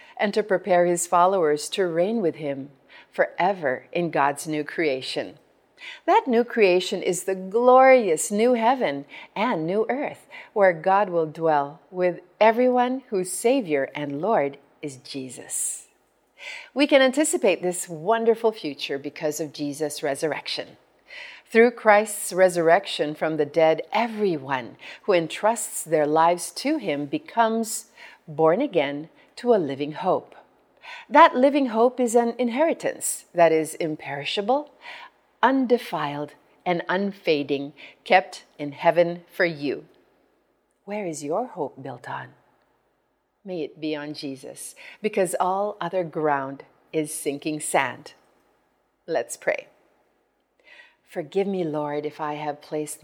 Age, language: 40-59, Filipino